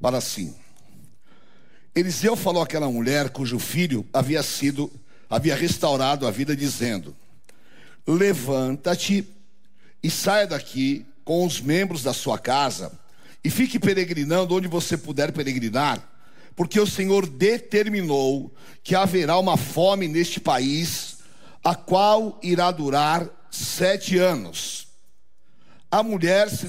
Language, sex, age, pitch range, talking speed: Portuguese, male, 60-79, 140-190 Hz, 115 wpm